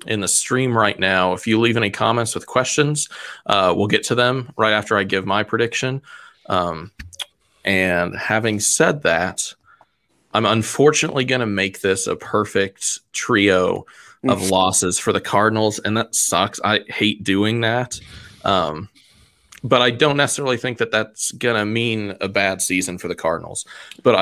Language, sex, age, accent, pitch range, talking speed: English, male, 20-39, American, 95-120 Hz, 165 wpm